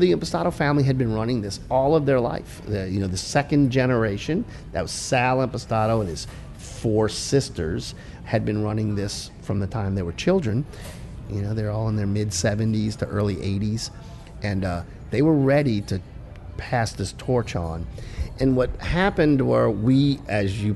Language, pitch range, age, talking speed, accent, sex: English, 95-125 Hz, 50-69, 180 wpm, American, male